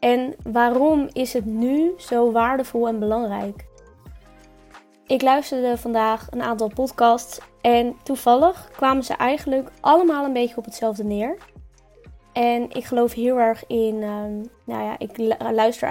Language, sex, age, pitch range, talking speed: Dutch, female, 20-39, 215-245 Hz, 135 wpm